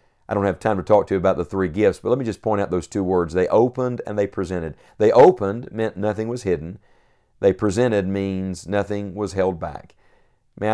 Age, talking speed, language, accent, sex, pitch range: 50-69, 225 wpm, English, American, male, 95-115 Hz